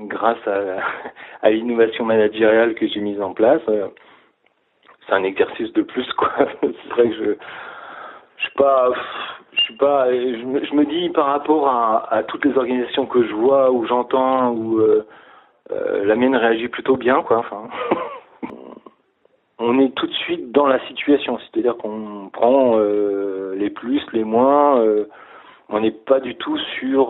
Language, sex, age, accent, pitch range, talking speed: French, male, 40-59, French, 105-145 Hz, 170 wpm